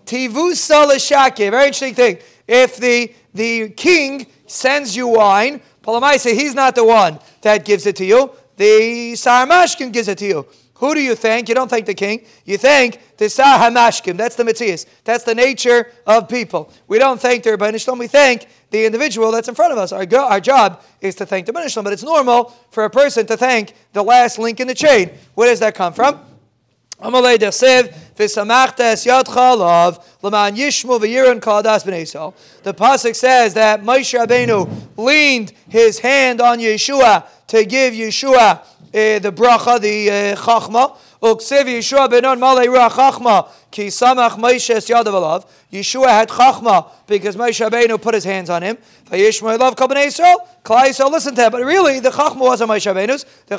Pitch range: 215-260 Hz